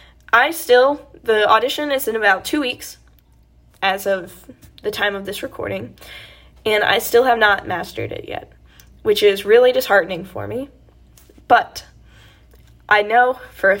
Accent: American